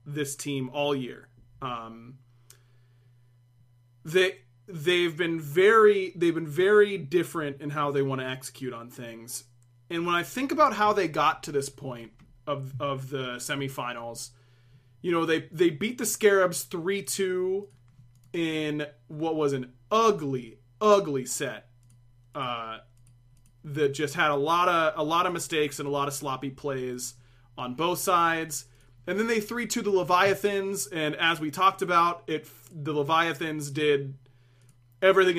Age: 30-49